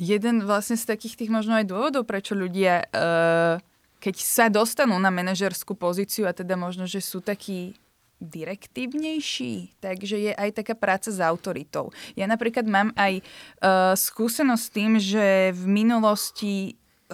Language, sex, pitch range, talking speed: Slovak, female, 185-225 Hz, 140 wpm